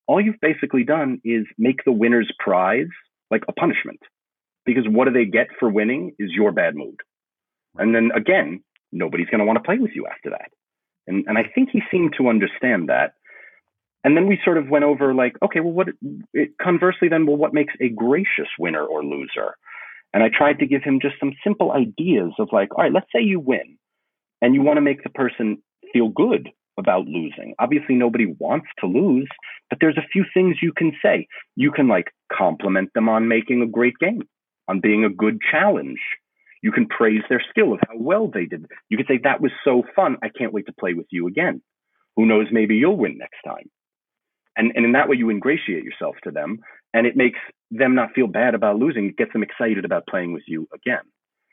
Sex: male